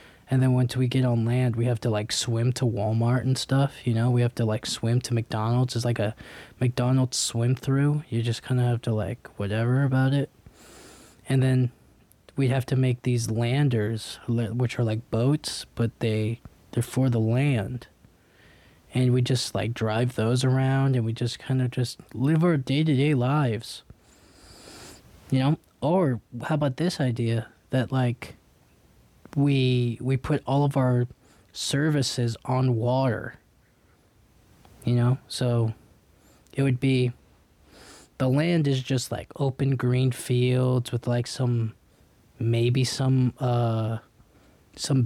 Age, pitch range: 20-39, 115-130 Hz